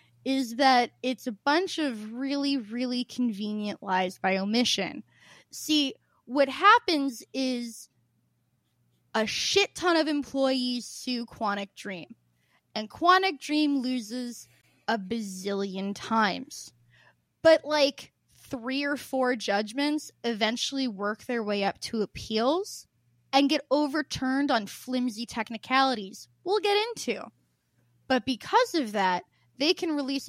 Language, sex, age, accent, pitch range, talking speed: English, female, 10-29, American, 215-290 Hz, 120 wpm